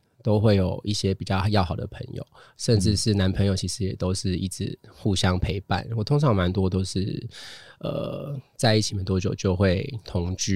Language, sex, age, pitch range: Chinese, male, 20-39, 95-115 Hz